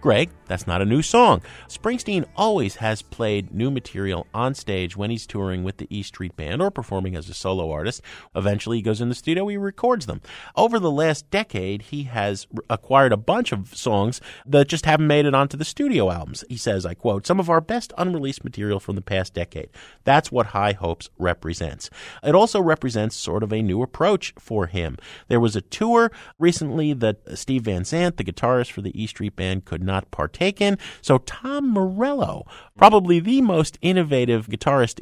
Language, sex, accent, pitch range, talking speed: English, male, American, 100-165 Hz, 195 wpm